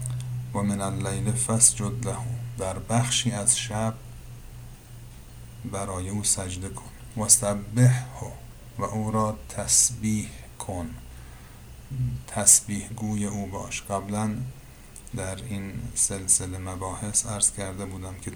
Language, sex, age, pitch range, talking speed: Persian, male, 50-69, 95-115 Hz, 110 wpm